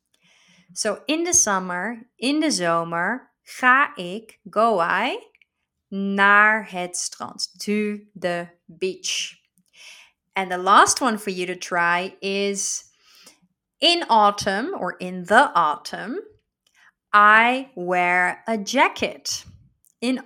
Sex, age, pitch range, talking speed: female, 30-49, 185-245 Hz, 110 wpm